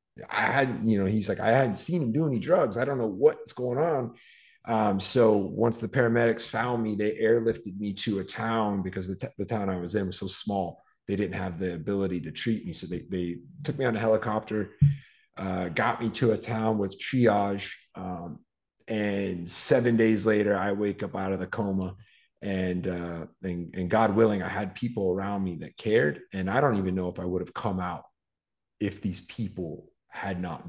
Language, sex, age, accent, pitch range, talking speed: English, male, 30-49, American, 95-115 Hz, 210 wpm